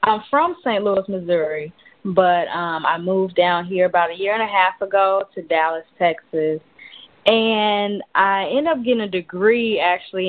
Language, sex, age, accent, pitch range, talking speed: English, female, 20-39, American, 175-220 Hz, 170 wpm